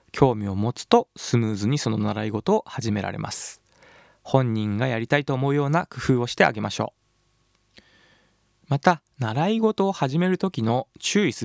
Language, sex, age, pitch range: Japanese, male, 20-39, 115-180 Hz